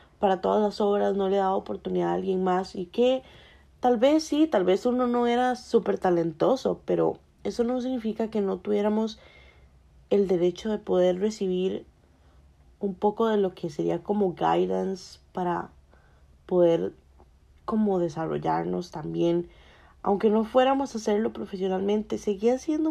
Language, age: Spanish, 30-49